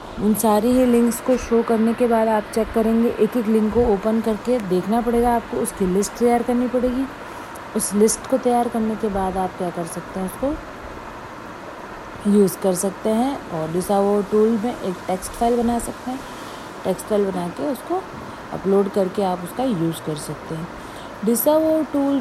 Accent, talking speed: native, 180 wpm